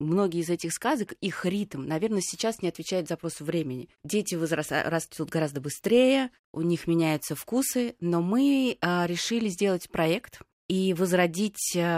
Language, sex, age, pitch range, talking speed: Russian, female, 20-39, 160-200 Hz, 135 wpm